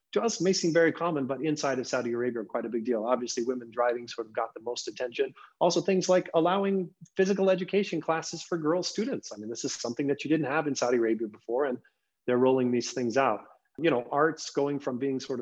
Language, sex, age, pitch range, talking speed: English, male, 30-49, 120-150 Hz, 235 wpm